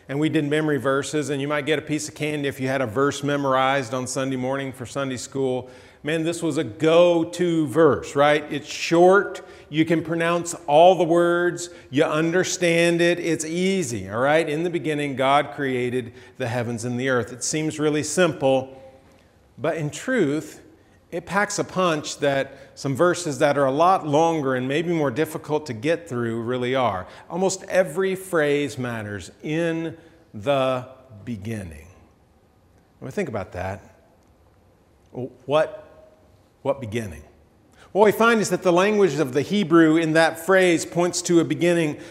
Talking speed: 170 wpm